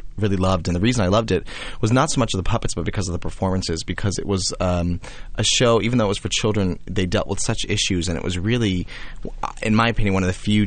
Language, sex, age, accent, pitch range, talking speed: English, male, 30-49, American, 90-105 Hz, 270 wpm